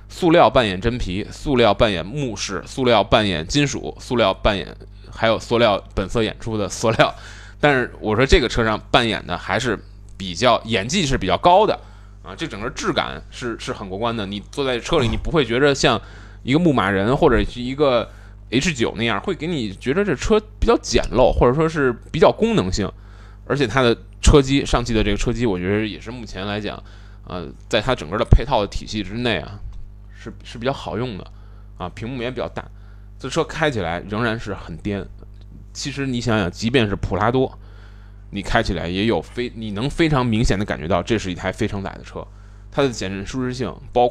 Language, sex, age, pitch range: Chinese, male, 20-39, 100-120 Hz